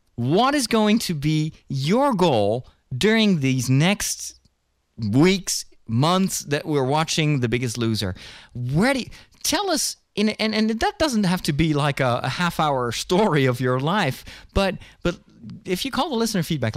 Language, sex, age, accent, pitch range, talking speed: English, male, 30-49, American, 120-180 Hz, 170 wpm